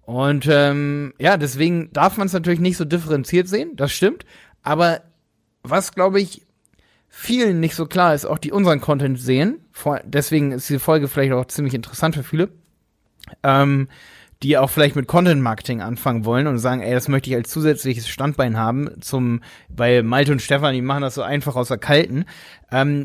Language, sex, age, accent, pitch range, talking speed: German, male, 30-49, German, 135-170 Hz, 185 wpm